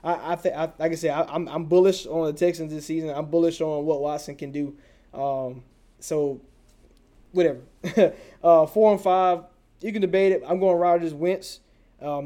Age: 20-39